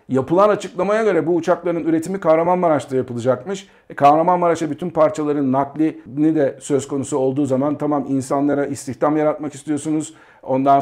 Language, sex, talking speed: Turkish, male, 130 wpm